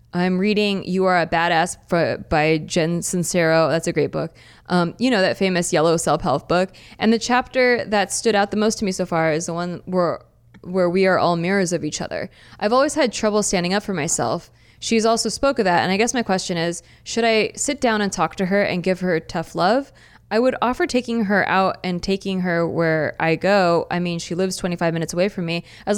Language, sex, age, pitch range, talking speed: English, female, 20-39, 175-220 Hz, 230 wpm